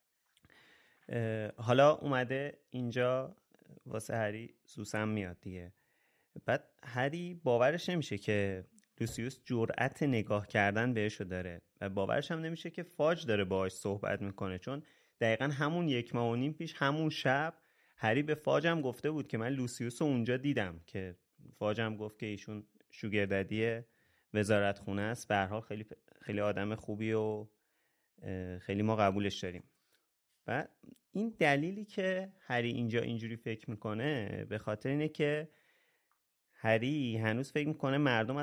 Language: Persian